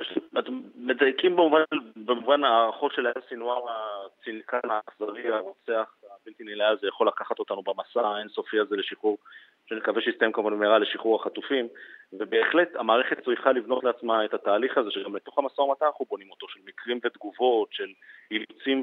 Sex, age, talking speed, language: male, 30-49, 140 wpm, Hebrew